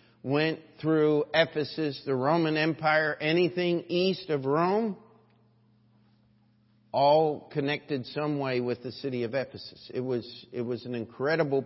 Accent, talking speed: American, 125 wpm